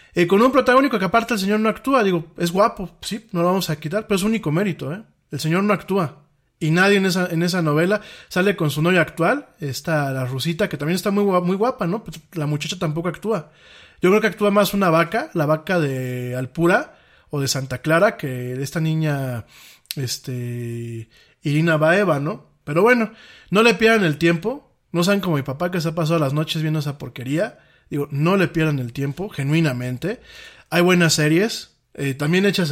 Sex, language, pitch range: male, Spanish, 145-190 Hz